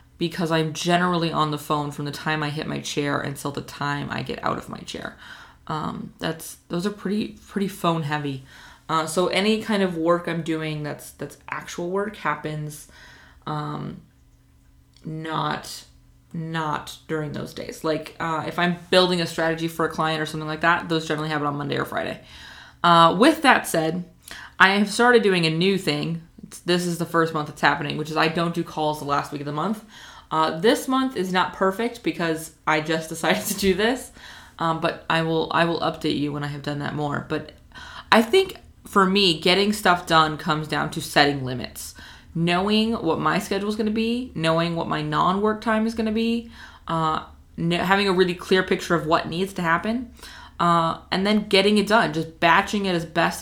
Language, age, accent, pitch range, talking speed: English, 20-39, American, 155-195 Hz, 205 wpm